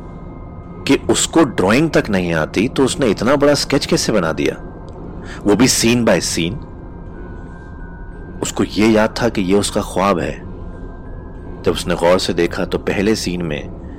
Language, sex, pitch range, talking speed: Hindi, male, 85-100 Hz, 155 wpm